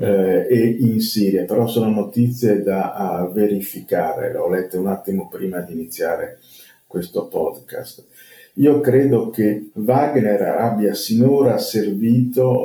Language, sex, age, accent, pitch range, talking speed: Italian, male, 50-69, native, 95-120 Hz, 120 wpm